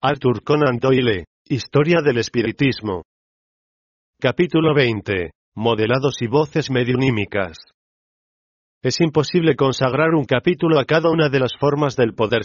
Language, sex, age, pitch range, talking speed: Spanish, male, 40-59, 120-150 Hz, 120 wpm